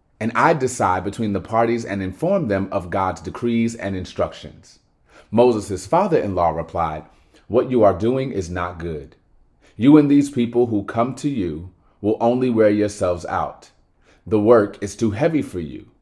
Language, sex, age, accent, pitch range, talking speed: English, male, 30-49, American, 95-130 Hz, 170 wpm